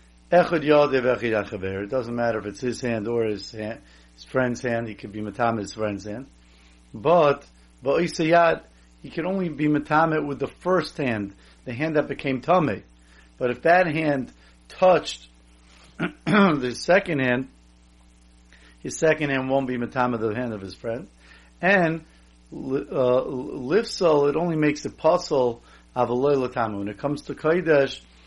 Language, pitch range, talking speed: English, 100-145 Hz, 140 wpm